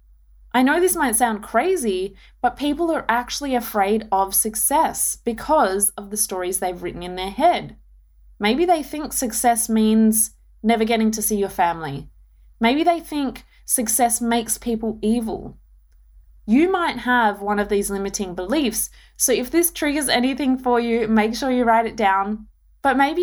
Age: 20-39